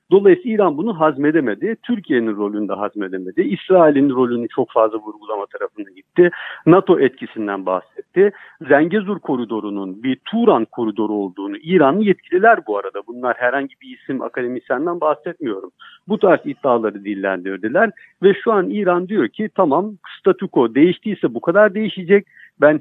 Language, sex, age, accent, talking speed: Turkish, male, 50-69, native, 135 wpm